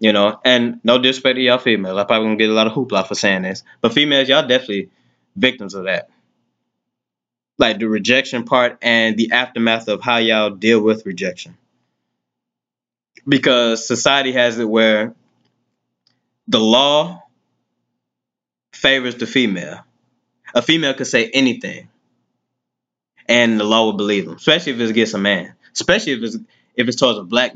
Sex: male